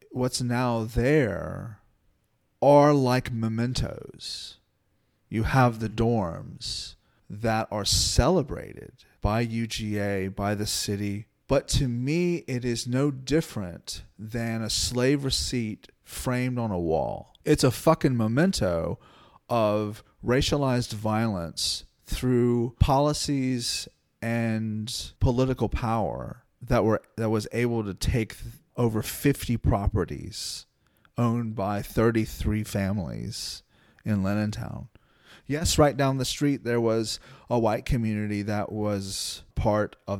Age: 30-49